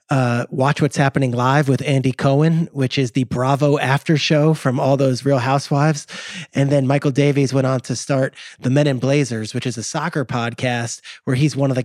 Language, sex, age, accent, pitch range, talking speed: English, male, 30-49, American, 130-150 Hz, 210 wpm